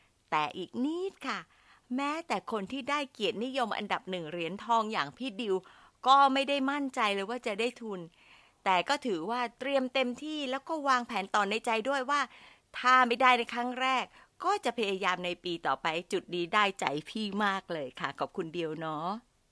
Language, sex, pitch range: Thai, female, 170-250 Hz